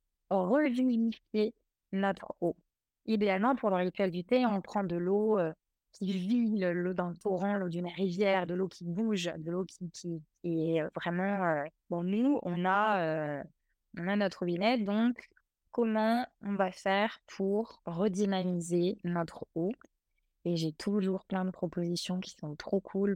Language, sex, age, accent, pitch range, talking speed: French, female, 20-39, French, 170-200 Hz, 160 wpm